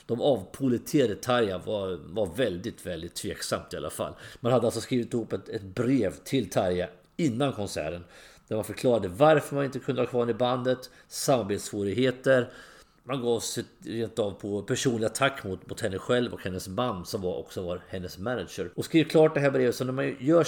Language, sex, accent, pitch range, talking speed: English, male, Swedish, 95-135 Hz, 190 wpm